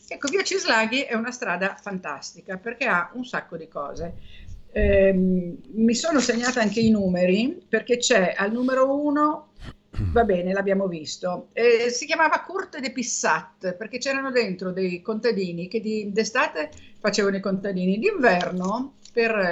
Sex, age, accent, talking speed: female, 50-69, native, 150 wpm